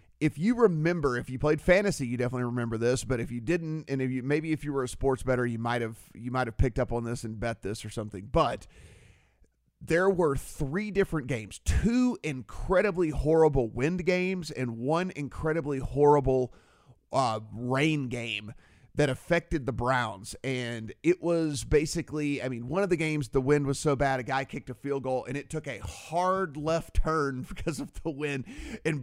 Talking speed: 190 wpm